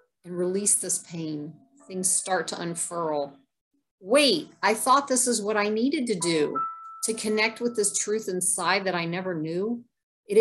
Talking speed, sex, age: 165 wpm, female, 40-59